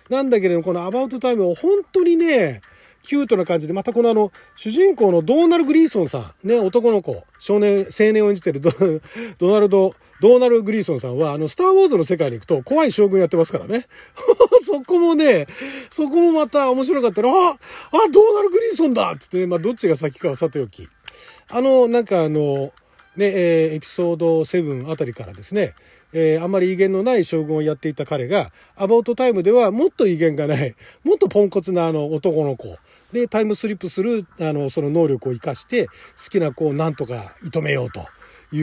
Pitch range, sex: 155-245 Hz, male